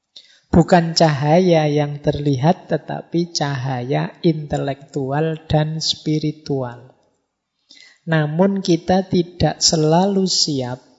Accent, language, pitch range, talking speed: native, Indonesian, 145-180 Hz, 75 wpm